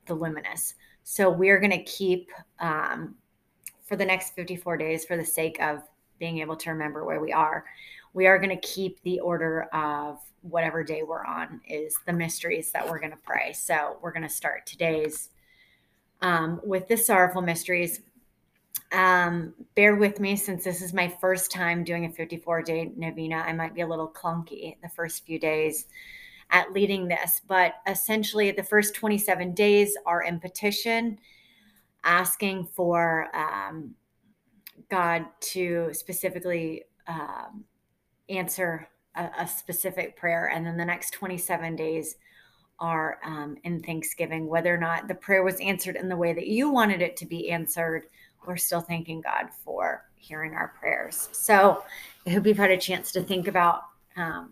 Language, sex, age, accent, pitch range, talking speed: English, female, 30-49, American, 165-190 Hz, 165 wpm